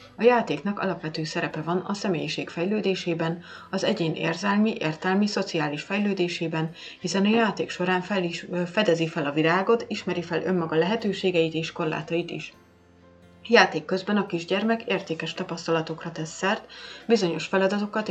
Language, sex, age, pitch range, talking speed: Hungarian, female, 30-49, 160-195 Hz, 140 wpm